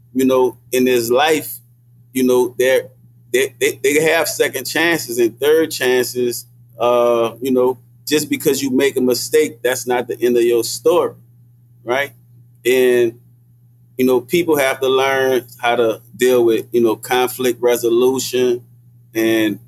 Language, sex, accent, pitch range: English, male, American, 120-135 Hz